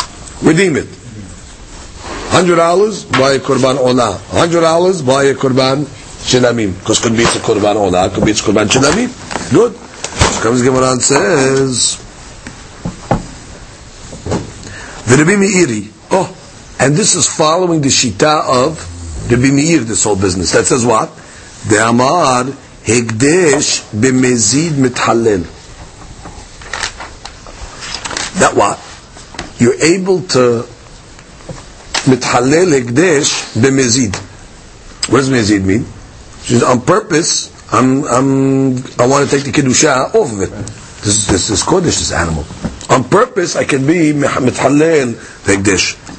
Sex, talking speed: male, 120 wpm